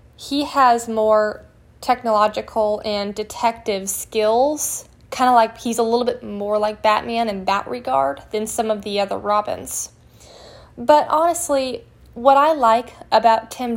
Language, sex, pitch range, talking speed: English, female, 210-245 Hz, 145 wpm